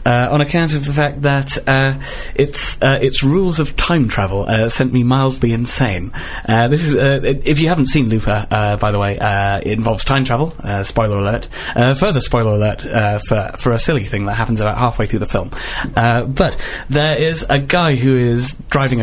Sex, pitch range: male, 110-135 Hz